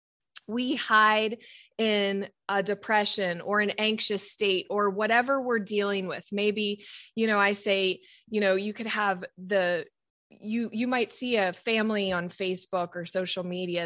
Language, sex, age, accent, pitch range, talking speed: English, female, 20-39, American, 195-250 Hz, 155 wpm